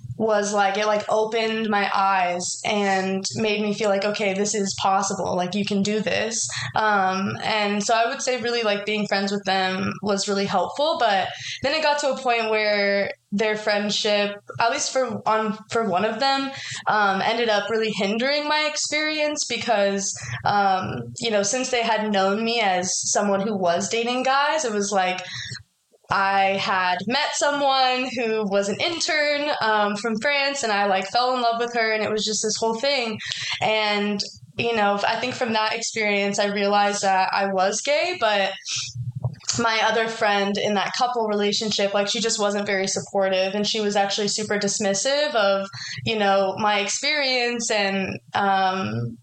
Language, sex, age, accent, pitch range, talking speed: English, female, 20-39, American, 195-230 Hz, 180 wpm